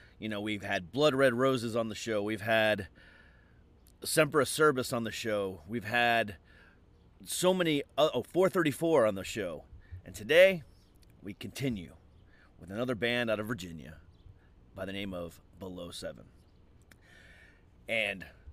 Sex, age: male, 30-49